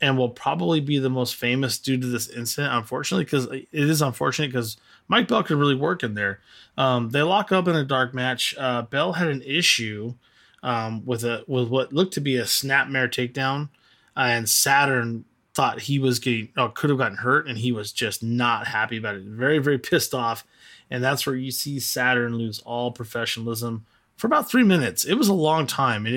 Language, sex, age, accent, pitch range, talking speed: English, male, 20-39, American, 120-145 Hz, 205 wpm